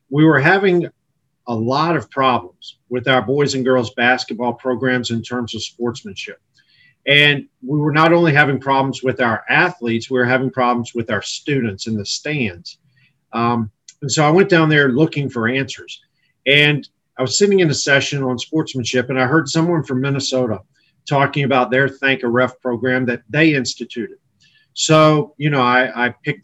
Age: 40-59